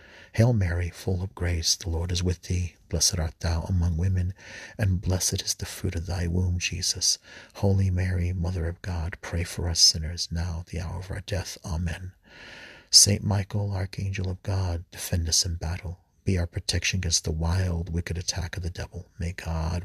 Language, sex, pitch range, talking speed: English, male, 85-95 Hz, 185 wpm